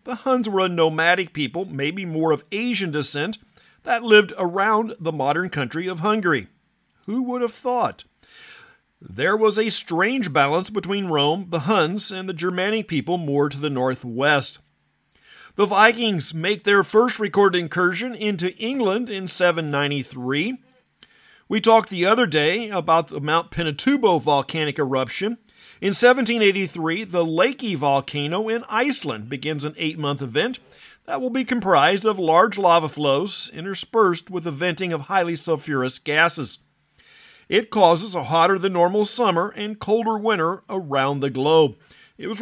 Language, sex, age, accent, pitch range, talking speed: English, male, 50-69, American, 155-215 Hz, 145 wpm